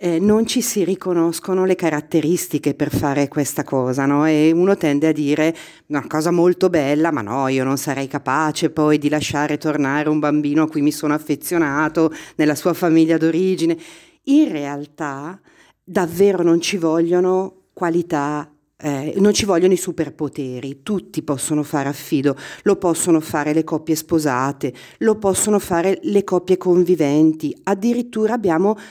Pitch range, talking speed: 150-185 Hz, 150 wpm